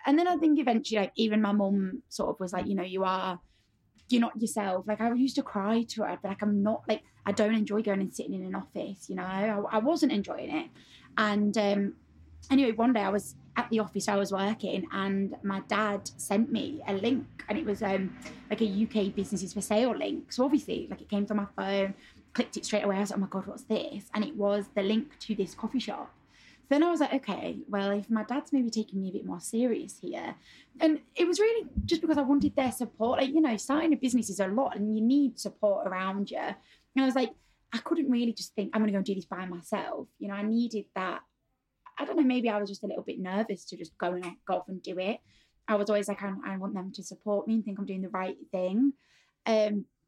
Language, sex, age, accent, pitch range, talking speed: English, female, 20-39, British, 195-240 Hz, 255 wpm